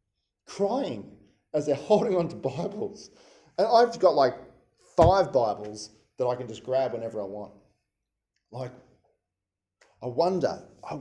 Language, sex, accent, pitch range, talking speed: English, male, Australian, 125-180 Hz, 135 wpm